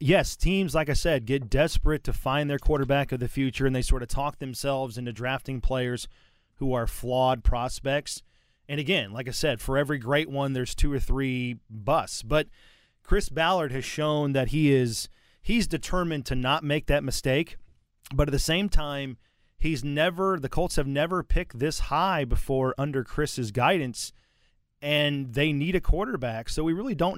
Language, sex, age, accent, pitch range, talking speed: English, male, 30-49, American, 125-150 Hz, 185 wpm